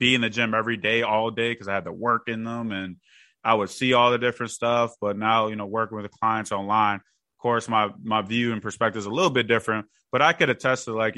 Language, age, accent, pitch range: English, 20-39, American, 105-120 Hz